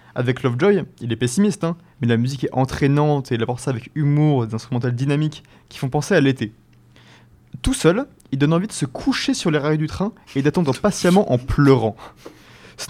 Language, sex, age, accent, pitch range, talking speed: French, male, 20-39, French, 125-150 Hz, 210 wpm